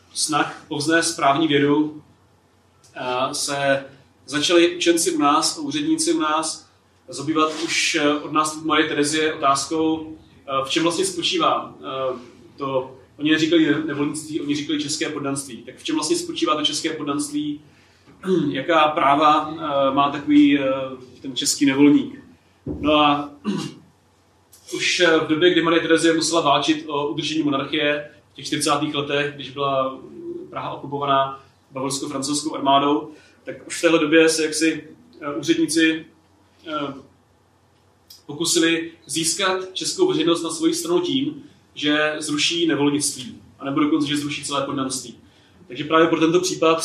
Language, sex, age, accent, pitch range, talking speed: Czech, male, 30-49, native, 140-165 Hz, 130 wpm